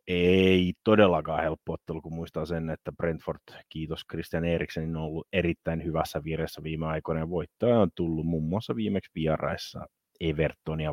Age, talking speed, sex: 30-49, 155 wpm, male